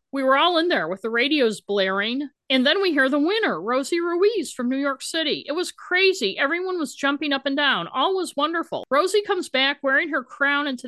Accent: American